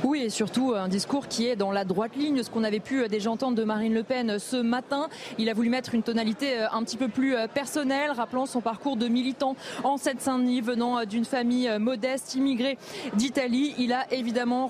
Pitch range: 235-275 Hz